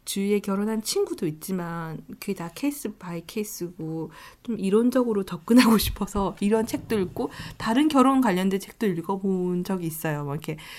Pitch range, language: 180-230 Hz, Korean